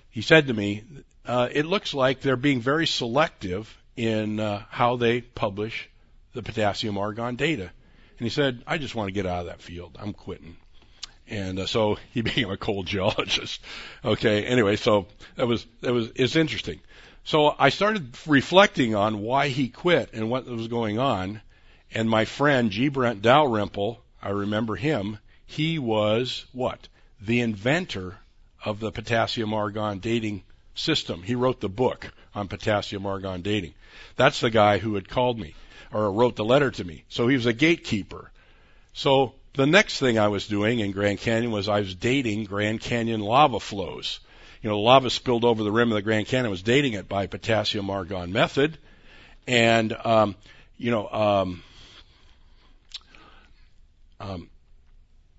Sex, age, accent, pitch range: male, 60-79, American, 100-125 Hz